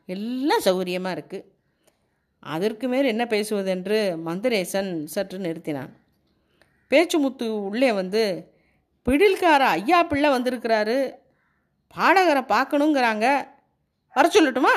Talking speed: 90 wpm